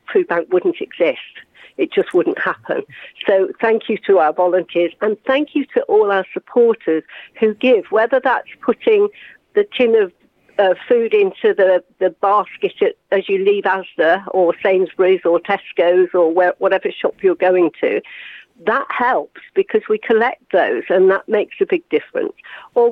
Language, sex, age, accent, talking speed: English, female, 50-69, British, 160 wpm